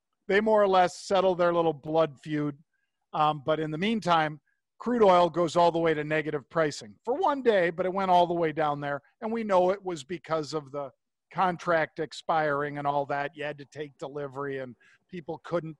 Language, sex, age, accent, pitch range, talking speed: English, male, 50-69, American, 155-195 Hz, 210 wpm